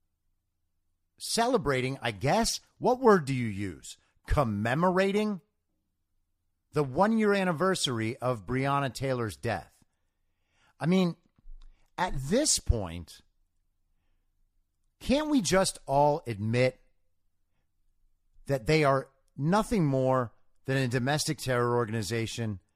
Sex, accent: male, American